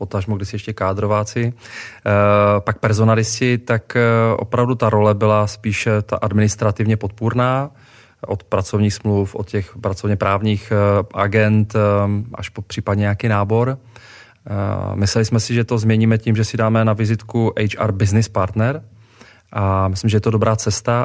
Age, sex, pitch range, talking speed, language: 30-49, male, 105-115 Hz, 155 wpm, Czech